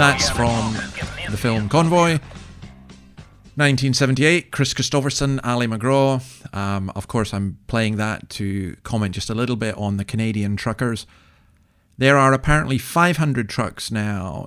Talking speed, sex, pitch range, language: 135 wpm, male, 100-135 Hz, English